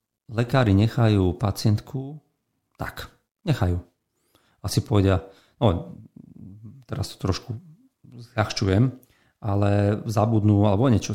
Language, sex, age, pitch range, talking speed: Slovak, male, 40-59, 95-120 Hz, 90 wpm